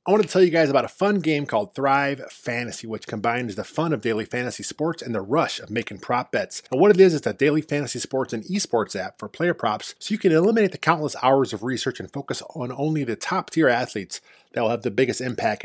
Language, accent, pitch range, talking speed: English, American, 120-155 Hz, 255 wpm